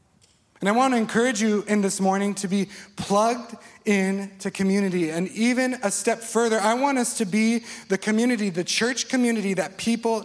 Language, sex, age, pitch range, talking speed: English, male, 30-49, 175-215 Hz, 180 wpm